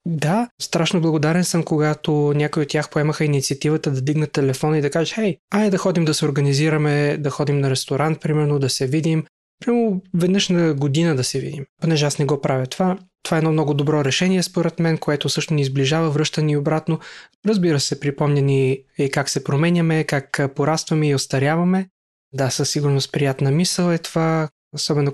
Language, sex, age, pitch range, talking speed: Bulgarian, male, 20-39, 140-165 Hz, 185 wpm